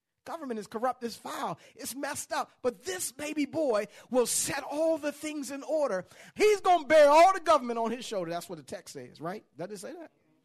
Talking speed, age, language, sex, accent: 225 wpm, 40-59, English, male, American